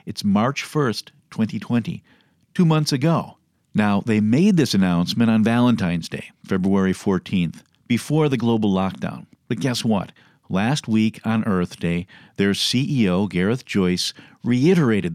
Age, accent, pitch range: 50-69, American, 100-150 Hz